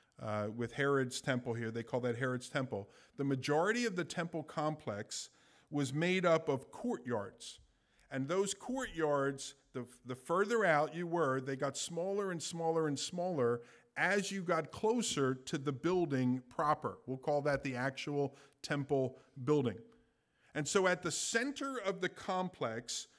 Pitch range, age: 135-190 Hz, 50-69